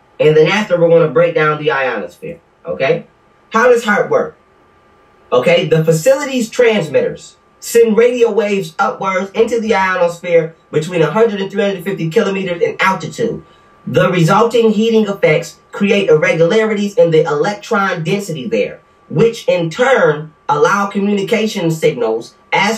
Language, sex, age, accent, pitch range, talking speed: English, male, 20-39, American, 170-235 Hz, 135 wpm